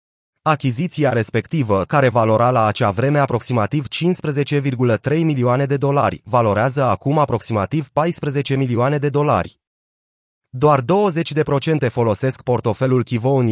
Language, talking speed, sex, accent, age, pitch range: Romanian, 110 wpm, male, native, 30-49, 115-145 Hz